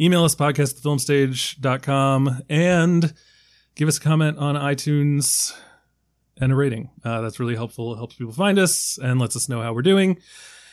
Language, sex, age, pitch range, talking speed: English, male, 30-49, 130-180 Hz, 160 wpm